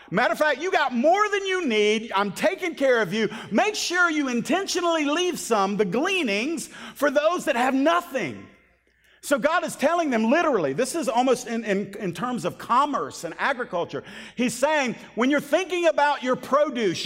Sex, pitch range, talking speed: male, 220-310 Hz, 185 wpm